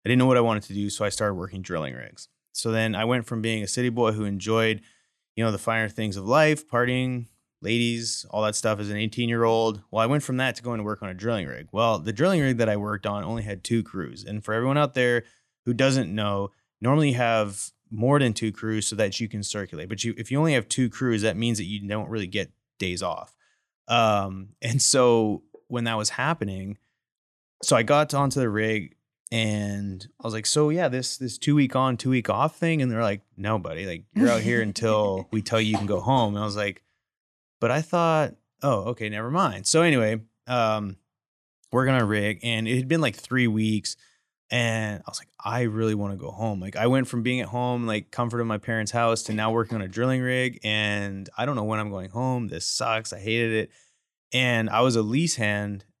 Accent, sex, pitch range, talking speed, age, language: American, male, 105-125 Hz, 235 wpm, 20-39, English